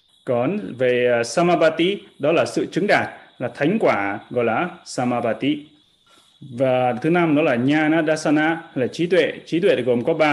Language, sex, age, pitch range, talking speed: Vietnamese, male, 20-39, 125-160 Hz, 165 wpm